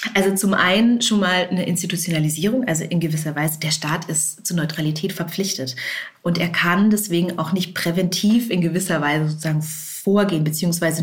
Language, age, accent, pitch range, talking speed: German, 30-49, German, 150-175 Hz, 165 wpm